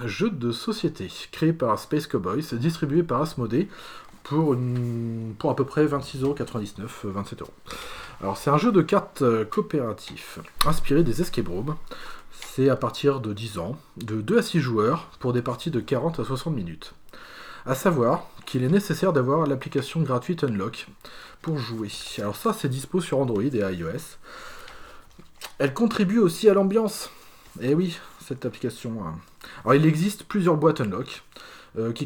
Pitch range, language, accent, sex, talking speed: 120-165 Hz, French, French, male, 155 wpm